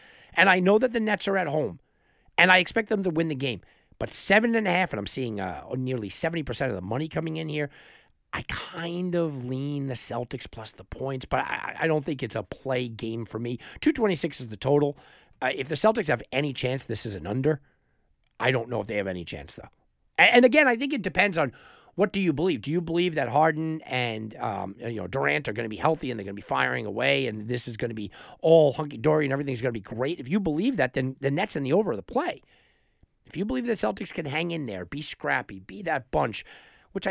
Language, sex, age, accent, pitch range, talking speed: English, male, 50-69, American, 125-185 Hz, 240 wpm